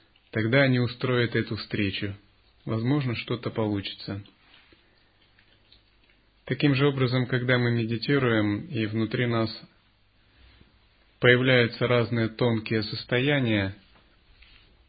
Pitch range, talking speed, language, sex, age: 105-125 Hz, 85 wpm, Russian, male, 30-49